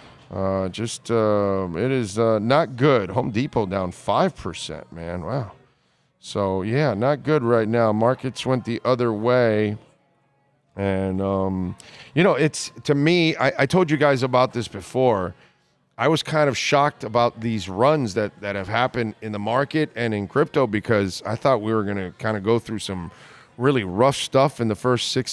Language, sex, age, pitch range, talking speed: English, male, 40-59, 110-145 Hz, 180 wpm